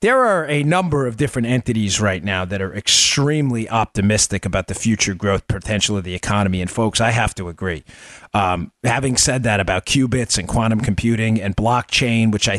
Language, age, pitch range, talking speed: English, 40-59, 105-135 Hz, 190 wpm